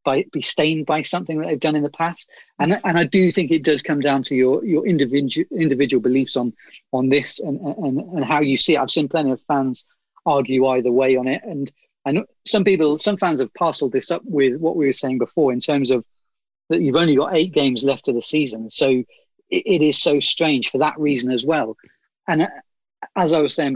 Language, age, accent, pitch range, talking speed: English, 30-49, British, 130-160 Hz, 230 wpm